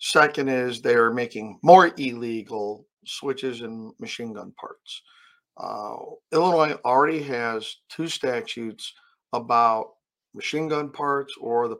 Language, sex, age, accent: English, male, 50-69, American